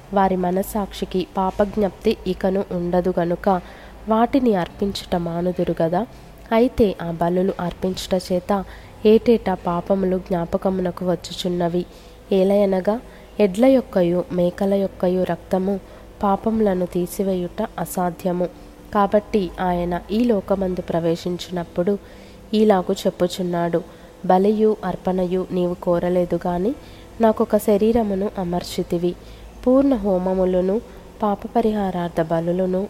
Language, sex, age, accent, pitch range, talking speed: Telugu, female, 20-39, native, 180-205 Hz, 80 wpm